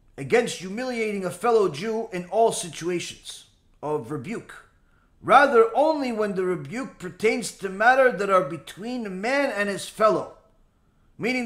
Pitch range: 175-255 Hz